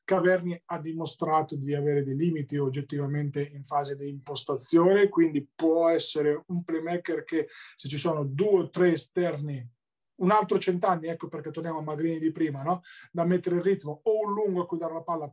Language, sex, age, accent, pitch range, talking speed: Italian, male, 20-39, native, 145-180 Hz, 190 wpm